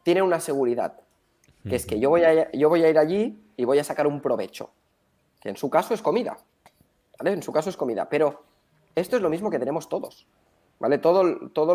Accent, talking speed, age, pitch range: Spanish, 210 wpm, 20-39, 130-180 Hz